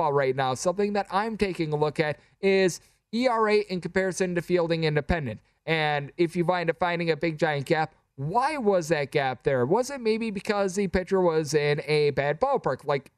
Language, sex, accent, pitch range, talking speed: English, male, American, 145-185 Hz, 195 wpm